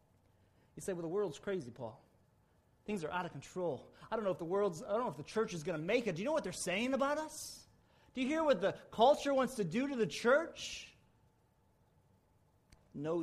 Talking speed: 225 wpm